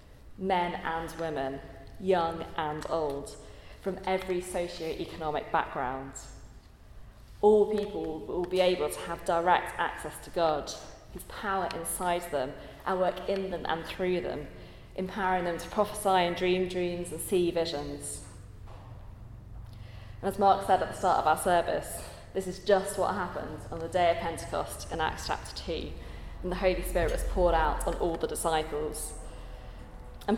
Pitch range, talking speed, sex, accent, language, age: 155-185 Hz, 155 wpm, female, British, English, 20-39